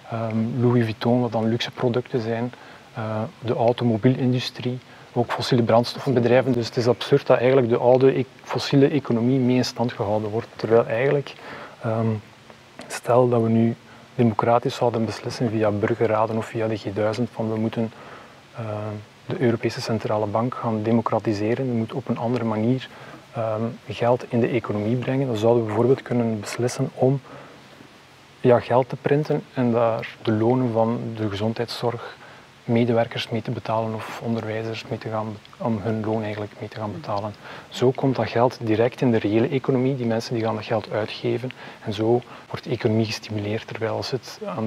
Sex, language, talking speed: male, Dutch, 165 wpm